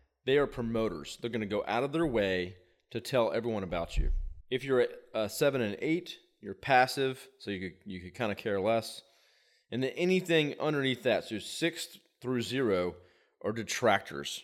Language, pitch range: English, 100-130 Hz